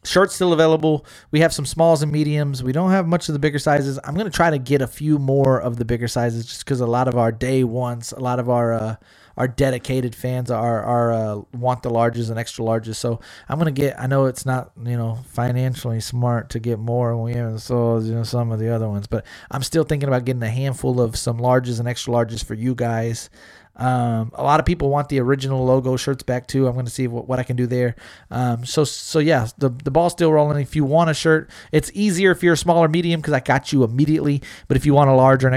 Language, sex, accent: English, male, American